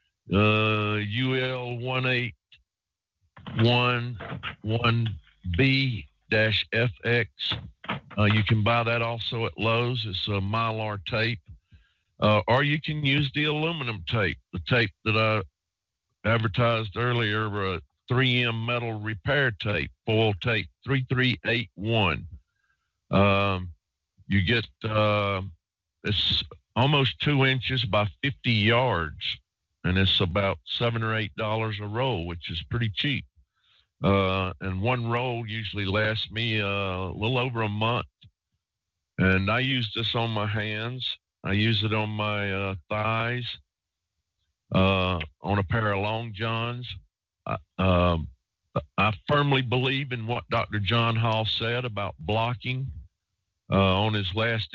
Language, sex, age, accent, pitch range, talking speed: English, male, 50-69, American, 95-115 Hz, 125 wpm